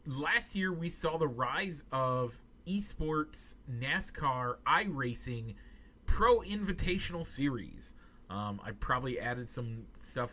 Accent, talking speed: American, 110 wpm